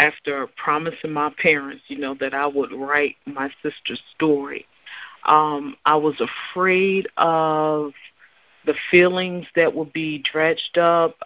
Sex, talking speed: female, 135 wpm